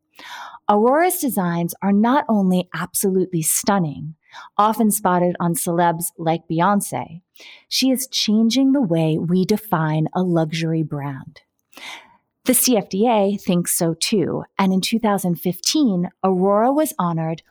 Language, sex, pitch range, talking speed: English, female, 170-225 Hz, 115 wpm